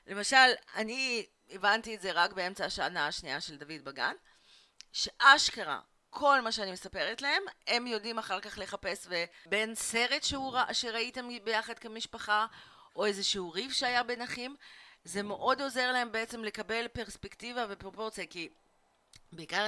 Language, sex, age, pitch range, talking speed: Hebrew, female, 30-49, 165-225 Hz, 140 wpm